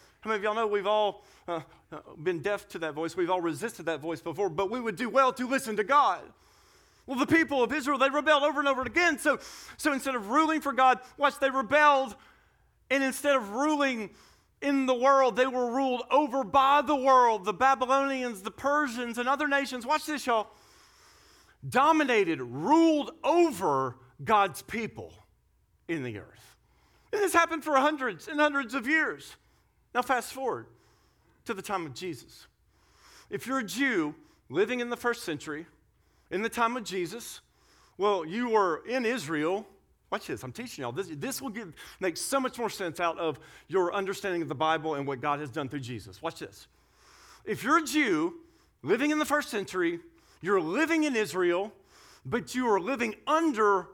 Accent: American